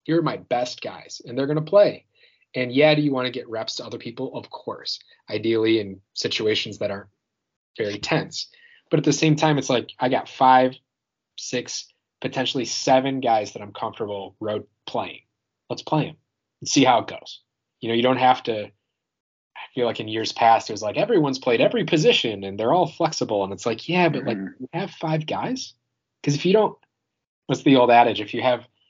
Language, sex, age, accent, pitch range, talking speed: English, male, 30-49, American, 110-135 Hz, 210 wpm